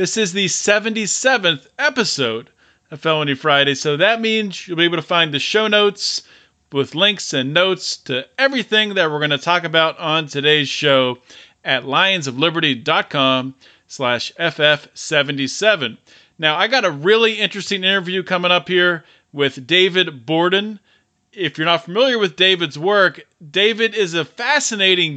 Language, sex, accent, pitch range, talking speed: English, male, American, 155-205 Hz, 150 wpm